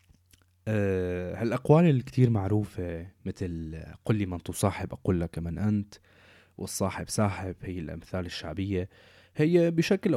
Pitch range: 95-135 Hz